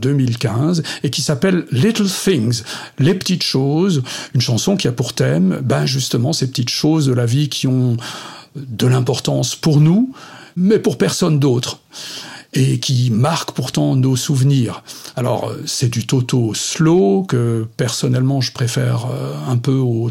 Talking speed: 160 wpm